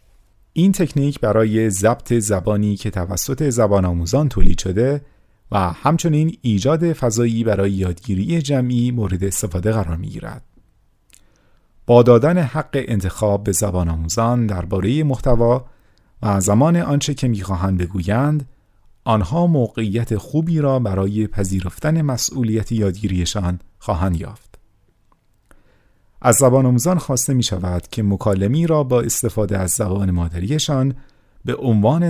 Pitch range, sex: 95-130 Hz, male